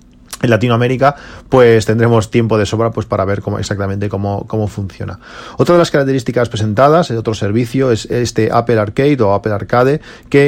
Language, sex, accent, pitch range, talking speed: English, male, Spanish, 105-130 Hz, 180 wpm